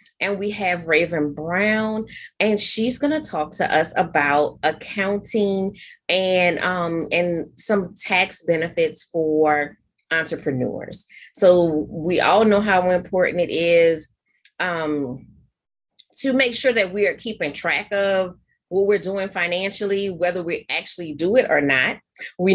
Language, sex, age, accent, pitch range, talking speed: English, female, 30-49, American, 160-200 Hz, 135 wpm